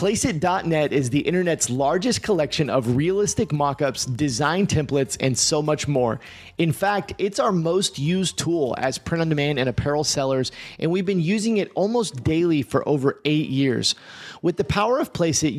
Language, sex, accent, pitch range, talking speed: English, male, American, 140-180 Hz, 165 wpm